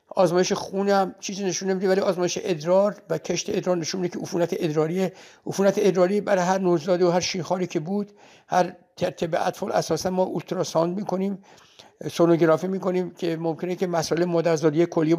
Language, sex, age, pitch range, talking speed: Persian, male, 60-79, 170-195 Hz, 160 wpm